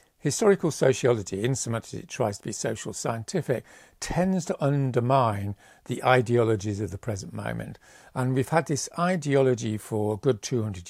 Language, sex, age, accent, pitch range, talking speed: English, male, 50-69, British, 105-135 Hz, 165 wpm